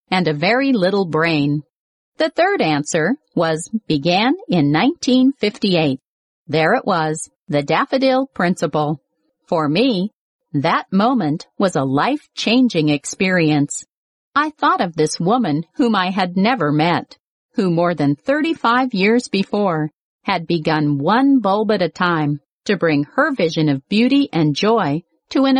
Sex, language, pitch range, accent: female, Chinese, 155-250 Hz, American